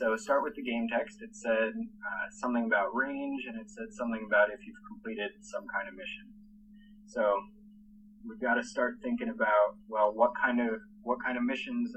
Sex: male